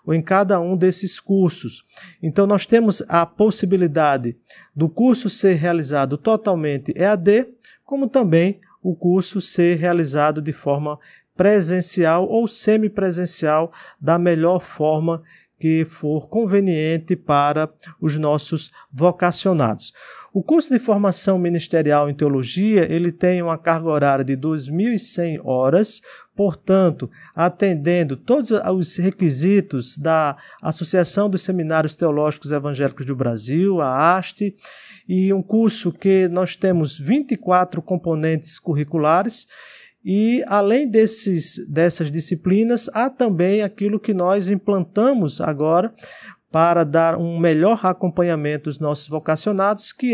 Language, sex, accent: Portuguese, male, Brazilian